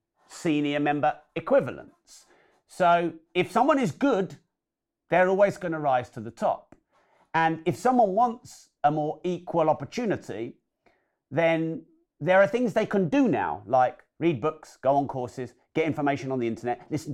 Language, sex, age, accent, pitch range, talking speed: English, male, 40-59, British, 140-180 Hz, 155 wpm